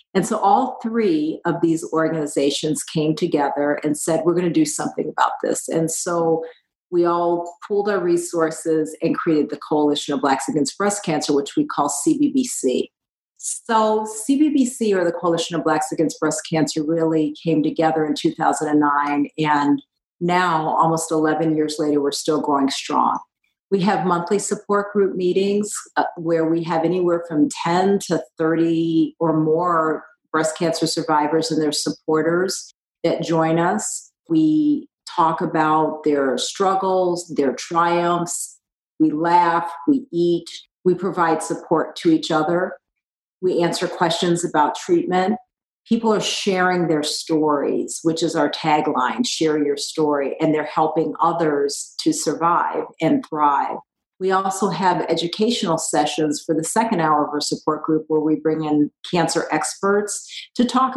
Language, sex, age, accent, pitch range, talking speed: English, female, 40-59, American, 155-185 Hz, 150 wpm